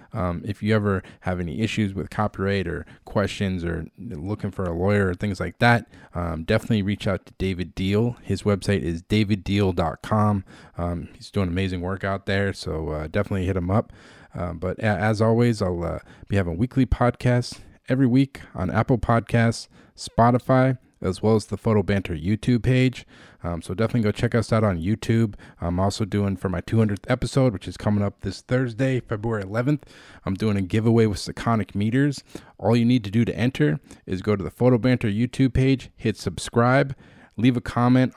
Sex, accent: male, American